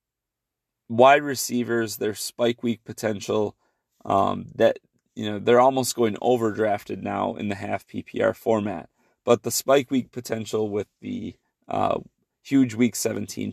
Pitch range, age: 105-120 Hz, 30-49